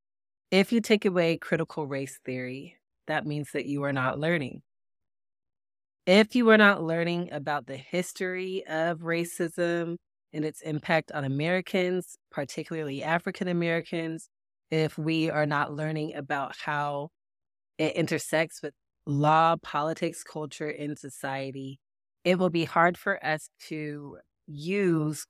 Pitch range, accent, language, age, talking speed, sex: 145-170 Hz, American, English, 30-49, 130 wpm, female